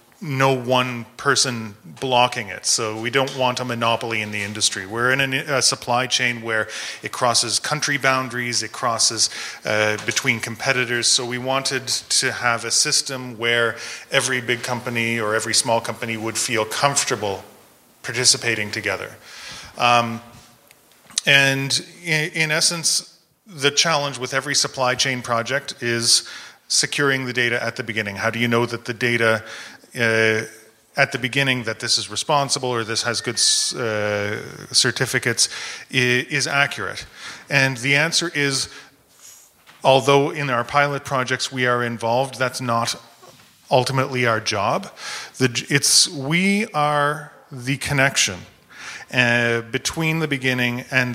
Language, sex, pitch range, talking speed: English, male, 115-140 Hz, 140 wpm